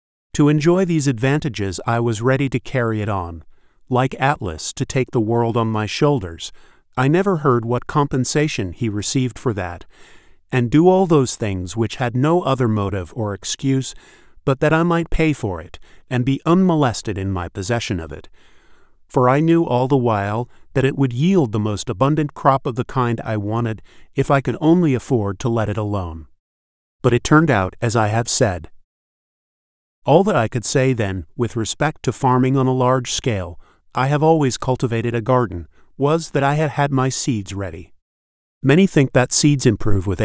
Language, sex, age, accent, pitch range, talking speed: English, male, 40-59, American, 100-140 Hz, 190 wpm